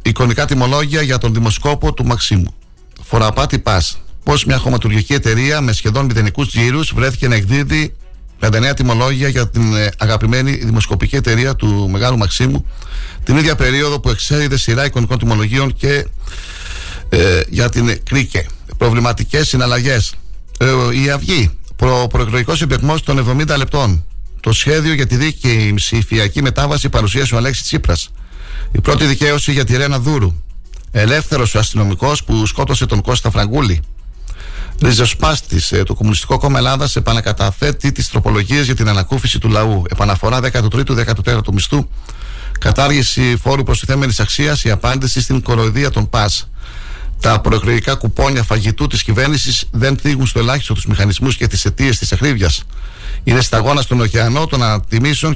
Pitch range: 105-135 Hz